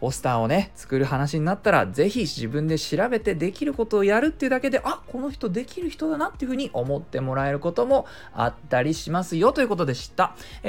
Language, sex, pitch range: Japanese, male, 140-210 Hz